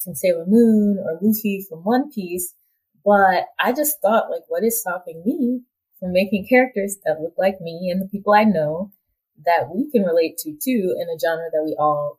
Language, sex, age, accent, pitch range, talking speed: English, female, 20-39, American, 180-245 Hz, 200 wpm